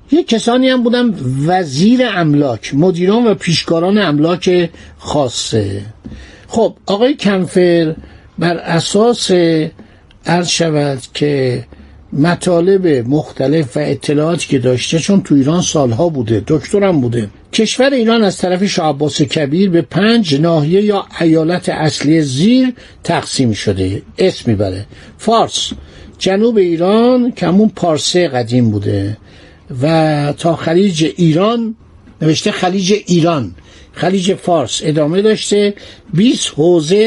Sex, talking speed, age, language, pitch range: male, 110 wpm, 60-79, Persian, 145-205 Hz